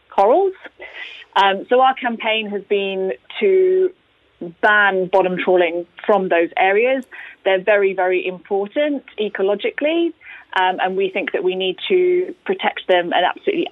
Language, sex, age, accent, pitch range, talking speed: English, female, 20-39, British, 185-225 Hz, 135 wpm